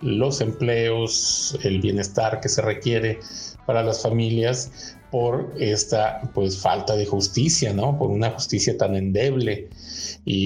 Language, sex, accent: Spanish, male, Mexican